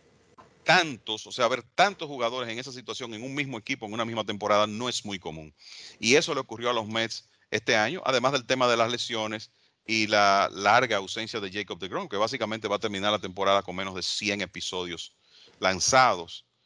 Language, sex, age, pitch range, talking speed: English, male, 40-59, 95-115 Hz, 200 wpm